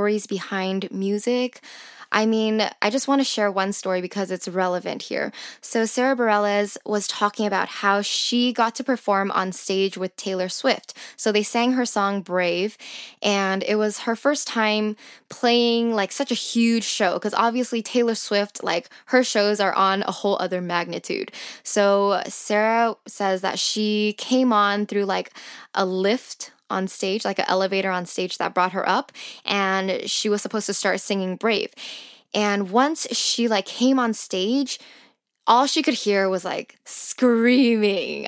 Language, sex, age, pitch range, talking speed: English, female, 10-29, 195-235 Hz, 165 wpm